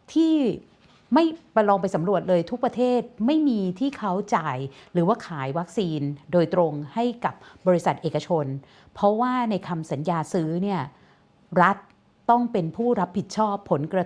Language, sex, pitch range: Thai, female, 170-215 Hz